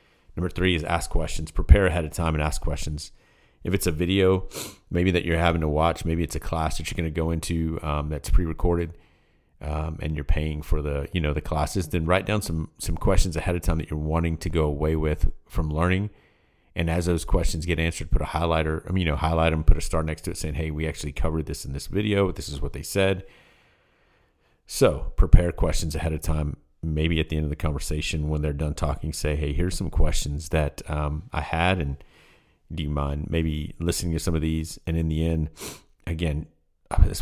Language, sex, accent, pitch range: English, male, American, 75-85 Hz